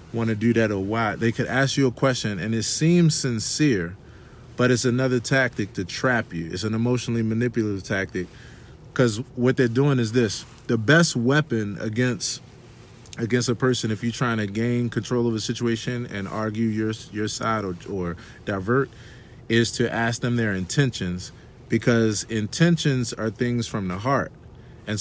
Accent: American